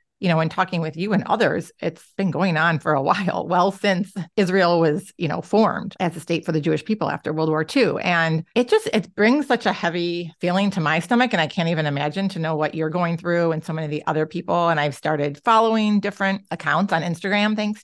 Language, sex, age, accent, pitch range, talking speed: English, female, 40-59, American, 155-200 Hz, 240 wpm